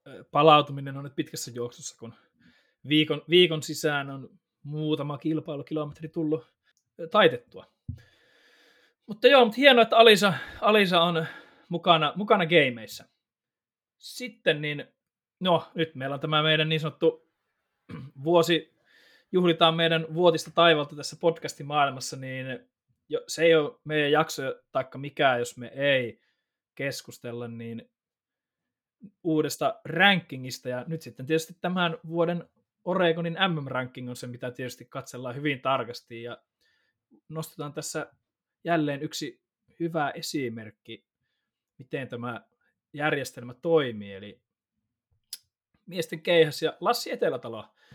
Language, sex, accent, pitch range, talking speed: Finnish, male, native, 140-170 Hz, 115 wpm